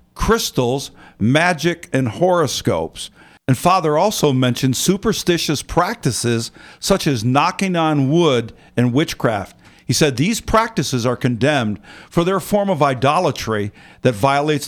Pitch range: 125-150 Hz